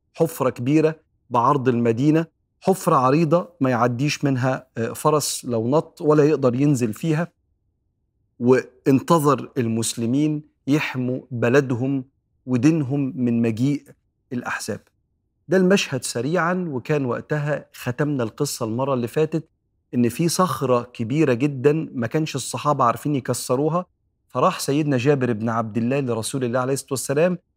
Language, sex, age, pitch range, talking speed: Arabic, male, 40-59, 125-155 Hz, 120 wpm